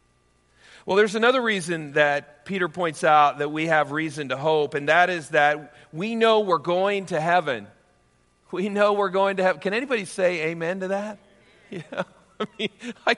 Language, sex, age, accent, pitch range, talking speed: English, male, 50-69, American, 155-205 Hz, 175 wpm